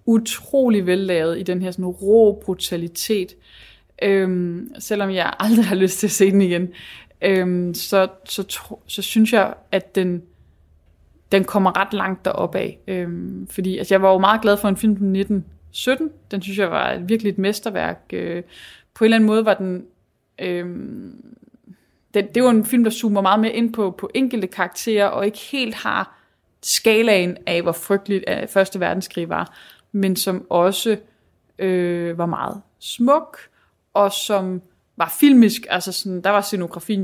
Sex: female